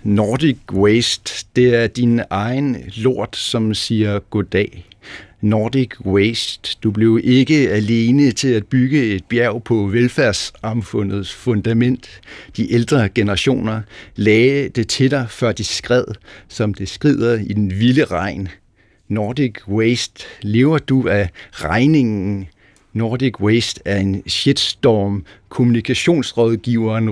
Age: 60-79